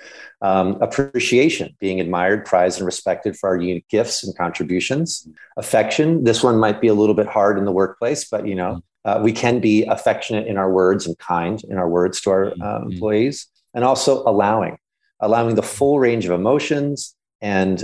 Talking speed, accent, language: 185 wpm, American, English